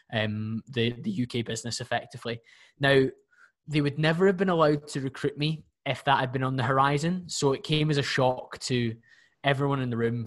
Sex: male